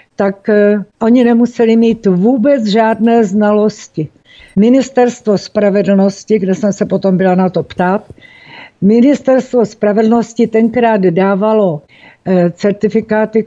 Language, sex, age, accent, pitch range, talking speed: Czech, female, 60-79, native, 195-220 Hz, 100 wpm